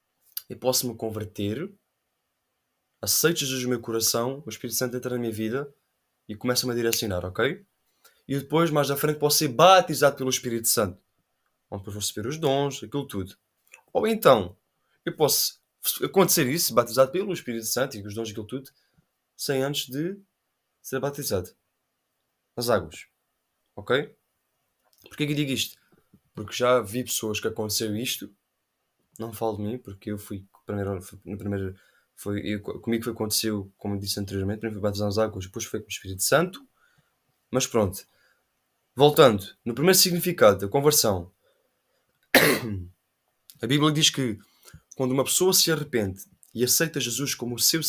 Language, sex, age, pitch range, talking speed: Portuguese, male, 20-39, 105-145 Hz, 160 wpm